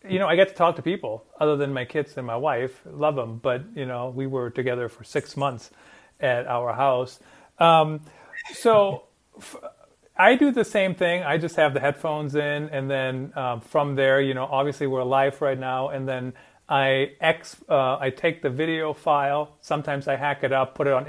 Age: 40-59